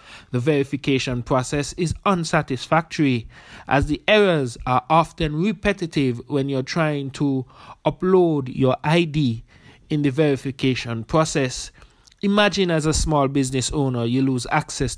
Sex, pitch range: male, 130-165 Hz